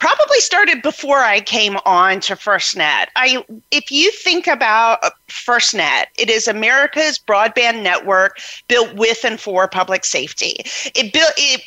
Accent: American